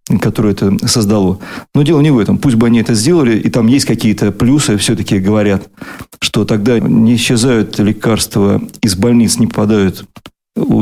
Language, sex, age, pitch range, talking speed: Russian, male, 40-59, 105-130 Hz, 165 wpm